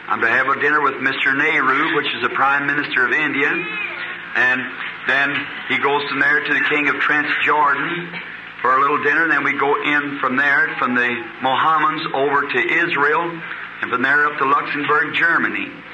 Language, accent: English, American